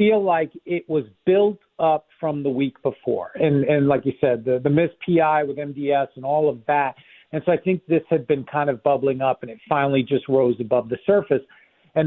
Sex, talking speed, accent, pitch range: male, 225 wpm, American, 145-185 Hz